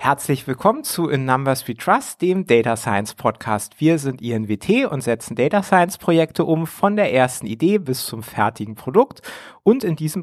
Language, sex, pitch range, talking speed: German, male, 130-190 Hz, 180 wpm